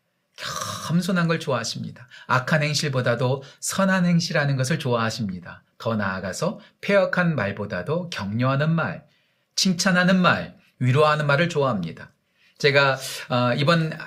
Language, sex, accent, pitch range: Korean, male, native, 135-190 Hz